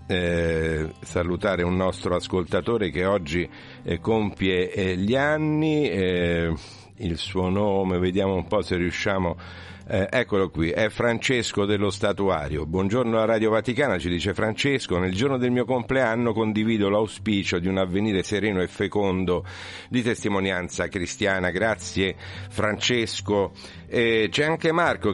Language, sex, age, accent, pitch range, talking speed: Italian, male, 50-69, native, 90-110 Hz, 135 wpm